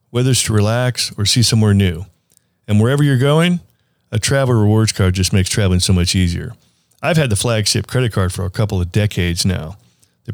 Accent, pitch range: American, 100-125 Hz